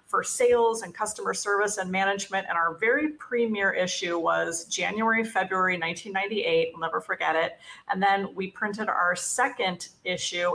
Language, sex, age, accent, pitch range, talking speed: English, female, 40-59, American, 190-235 Hz, 155 wpm